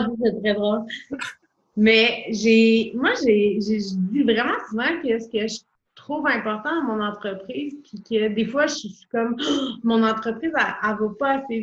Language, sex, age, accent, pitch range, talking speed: French, female, 30-49, Canadian, 210-265 Hz, 185 wpm